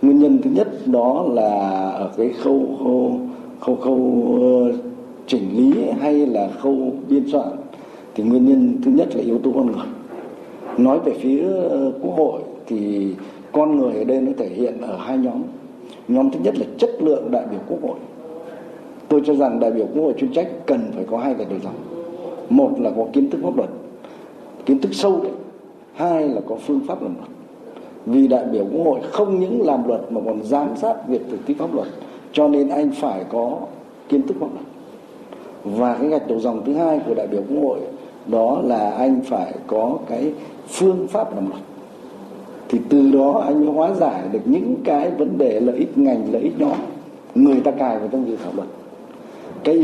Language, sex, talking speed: Vietnamese, male, 200 wpm